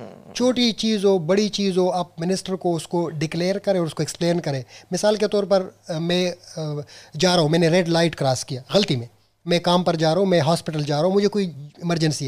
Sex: male